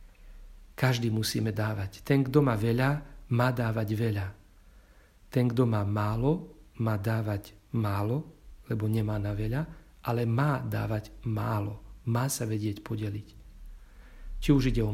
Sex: male